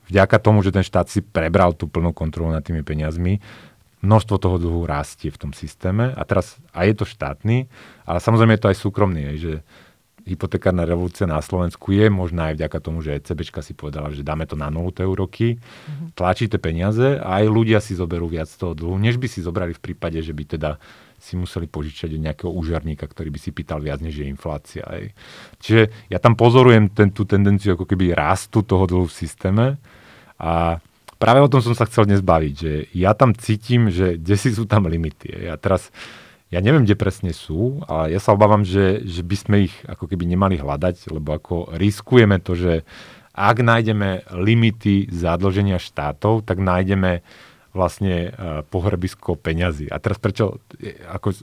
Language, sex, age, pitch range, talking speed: Slovak, male, 30-49, 85-105 Hz, 180 wpm